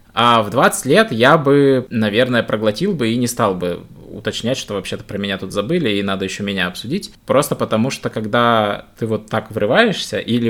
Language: Russian